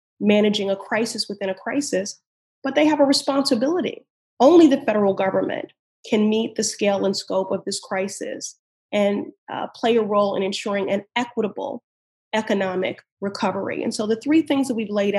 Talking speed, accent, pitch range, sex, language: 170 wpm, American, 200-250 Hz, female, English